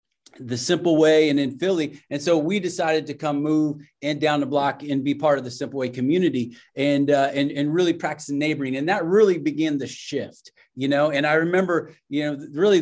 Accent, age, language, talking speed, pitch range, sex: American, 30-49, English, 215 wpm, 140-165 Hz, male